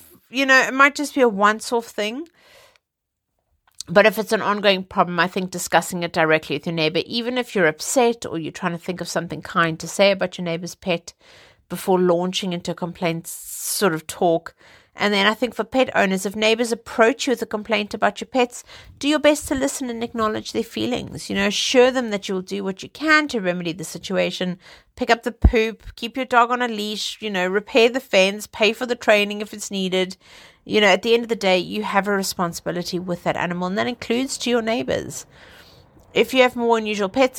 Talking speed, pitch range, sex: 220 wpm, 175-230 Hz, female